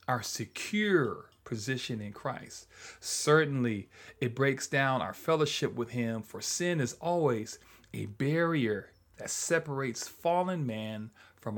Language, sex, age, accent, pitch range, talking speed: English, male, 40-59, American, 120-185 Hz, 125 wpm